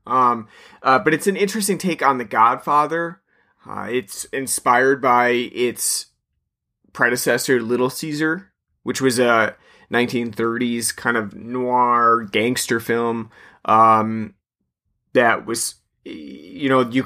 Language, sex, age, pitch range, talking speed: English, male, 30-49, 110-125 Hz, 120 wpm